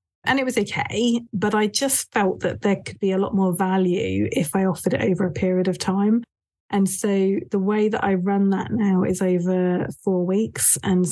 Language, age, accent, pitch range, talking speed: English, 30-49, British, 185-205 Hz, 210 wpm